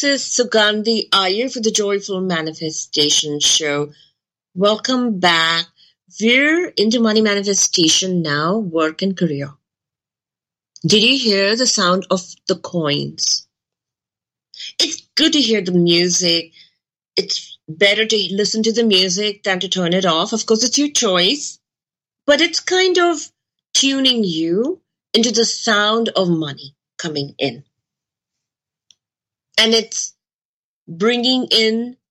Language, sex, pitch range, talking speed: English, female, 165-225 Hz, 125 wpm